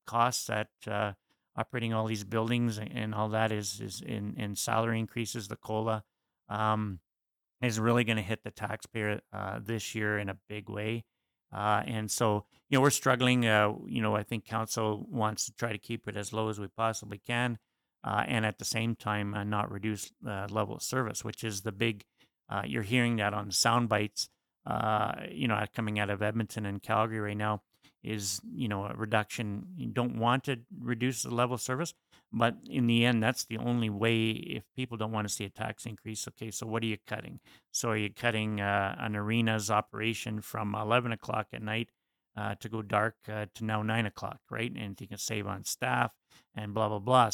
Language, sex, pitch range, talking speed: English, male, 105-115 Hz, 210 wpm